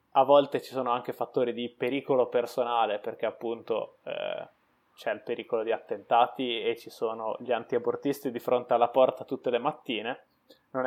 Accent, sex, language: native, male, Italian